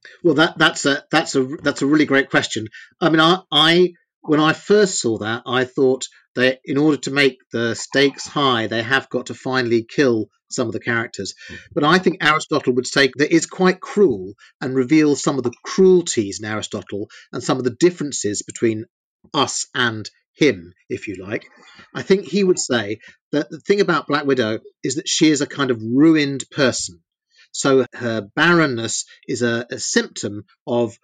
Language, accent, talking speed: English, British, 190 wpm